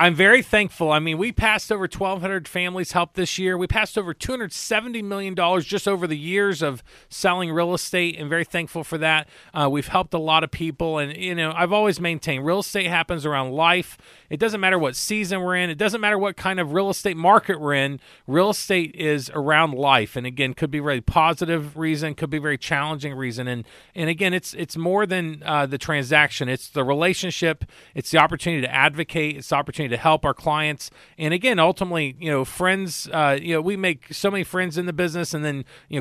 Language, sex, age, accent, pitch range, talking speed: English, male, 40-59, American, 150-185 Hz, 215 wpm